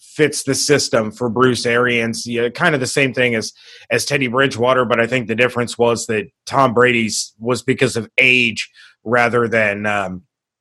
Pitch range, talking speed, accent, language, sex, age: 125-160 Hz, 180 wpm, American, English, male, 30-49